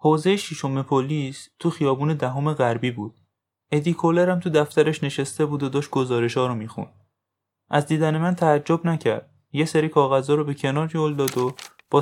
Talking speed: 170 wpm